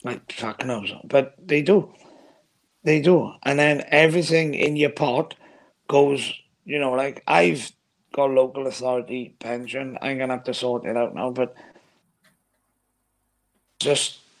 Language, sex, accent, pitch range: English, male, British, 120-140 Hz